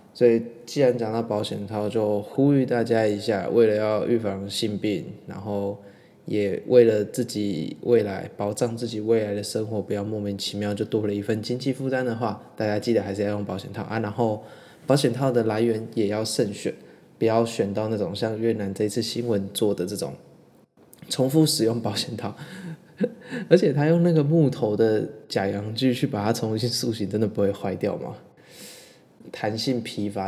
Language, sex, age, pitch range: Chinese, male, 20-39, 105-130 Hz